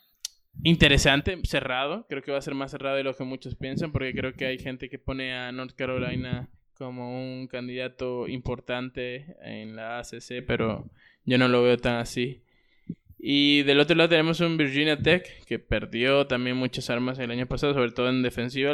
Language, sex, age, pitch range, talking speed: Spanish, male, 20-39, 125-140 Hz, 185 wpm